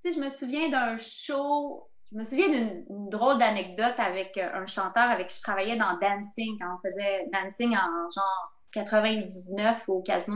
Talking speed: 180 wpm